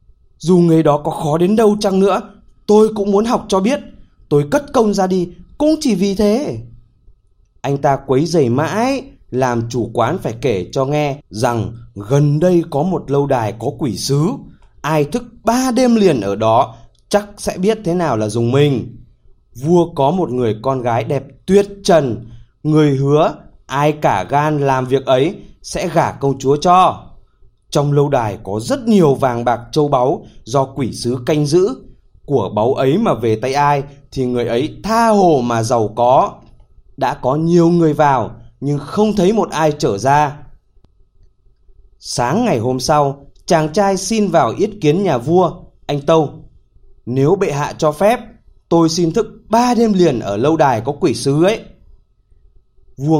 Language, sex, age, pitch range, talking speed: Vietnamese, male, 20-39, 125-190 Hz, 180 wpm